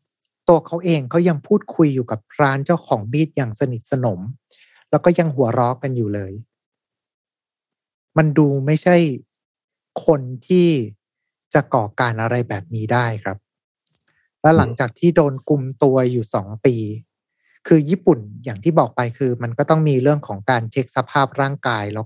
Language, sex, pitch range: Thai, male, 115-150 Hz